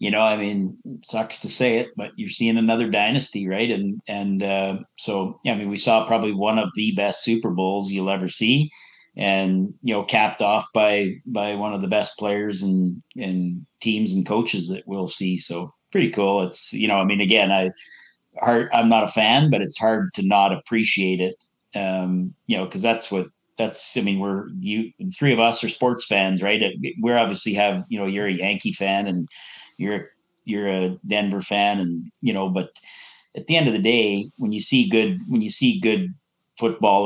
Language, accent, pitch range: English, American, 95-115 Hz